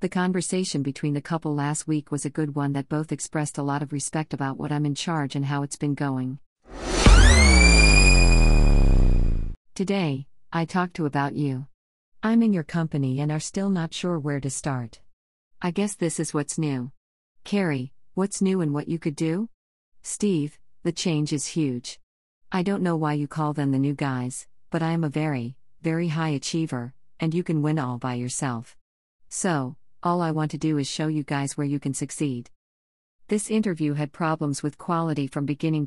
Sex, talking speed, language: female, 185 wpm, English